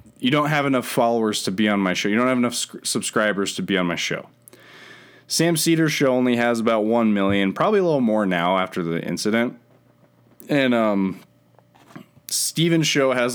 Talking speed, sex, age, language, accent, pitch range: 190 wpm, male, 20-39, English, American, 105-140 Hz